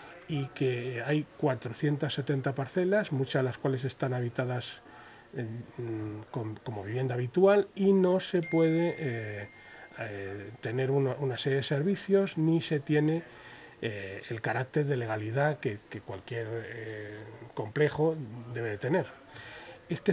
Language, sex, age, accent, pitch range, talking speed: Spanish, male, 40-59, Spanish, 120-150 Hz, 125 wpm